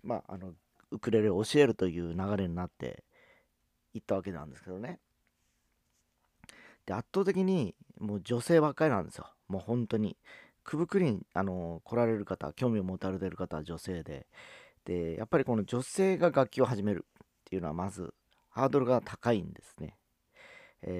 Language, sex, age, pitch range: Japanese, male, 40-59, 90-120 Hz